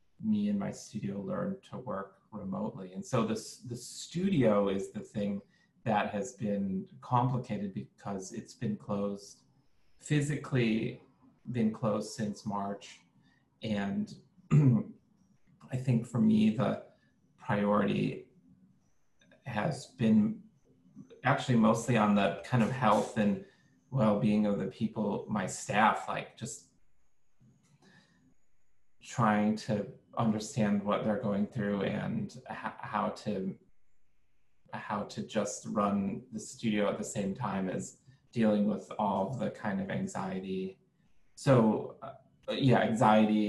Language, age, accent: English, 30-49, American